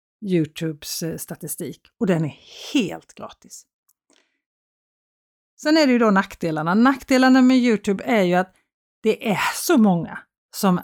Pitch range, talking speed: 180-245 Hz, 135 wpm